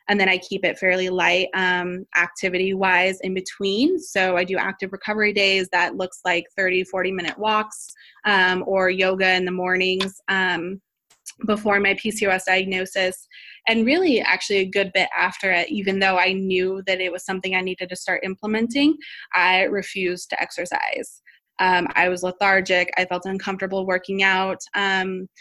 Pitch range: 185-205 Hz